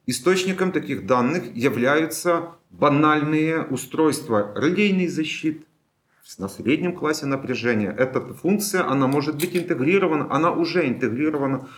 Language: Ukrainian